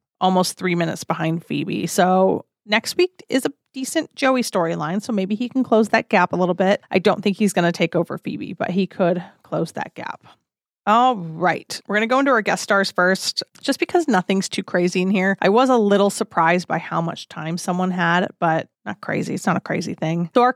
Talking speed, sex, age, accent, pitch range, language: 225 wpm, female, 30-49, American, 175-215 Hz, English